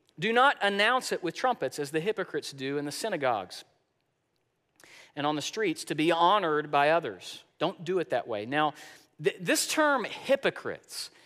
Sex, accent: male, American